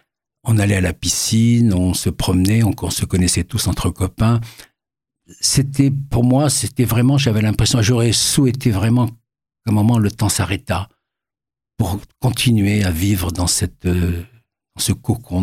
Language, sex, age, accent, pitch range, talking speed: French, male, 60-79, French, 95-115 Hz, 150 wpm